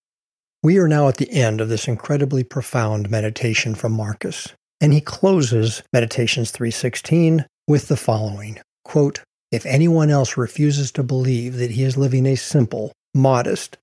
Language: English